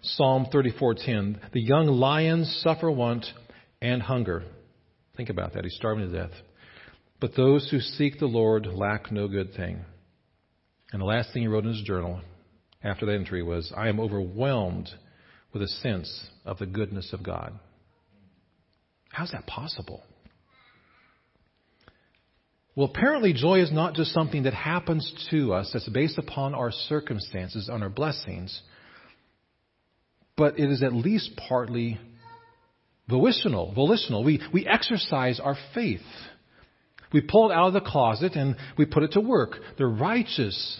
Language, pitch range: English, 105-150 Hz